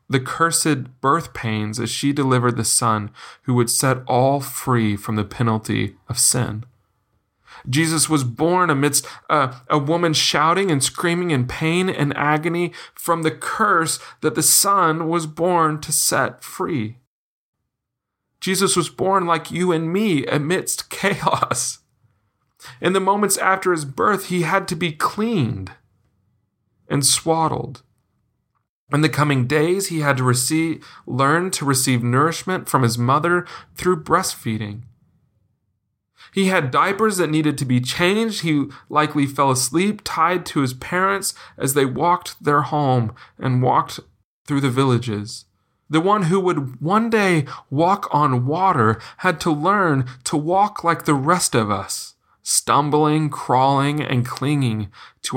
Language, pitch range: English, 120-165 Hz